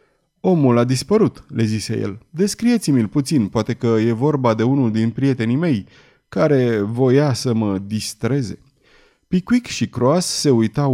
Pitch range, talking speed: 115-160 Hz, 150 wpm